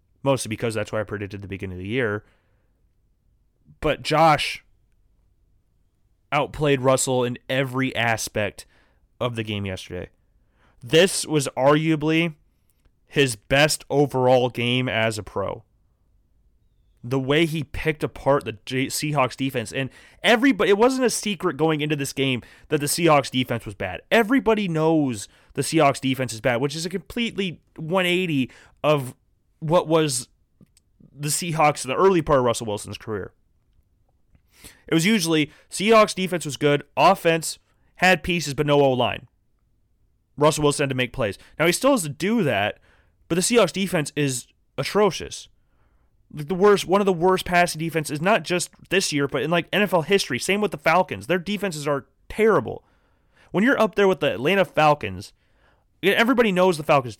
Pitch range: 110-175 Hz